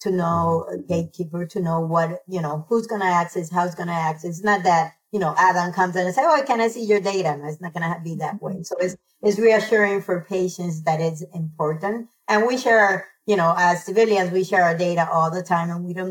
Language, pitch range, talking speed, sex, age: English, 170-205 Hz, 255 wpm, female, 30-49